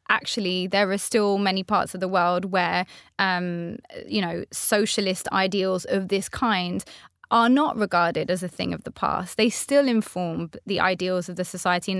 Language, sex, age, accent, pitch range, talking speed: English, female, 20-39, British, 180-220 Hz, 180 wpm